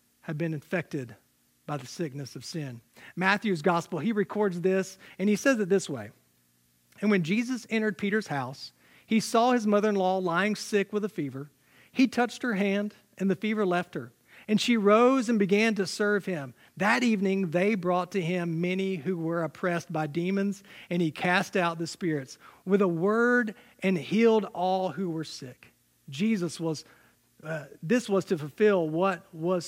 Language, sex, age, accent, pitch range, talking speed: English, male, 40-59, American, 165-210 Hz, 175 wpm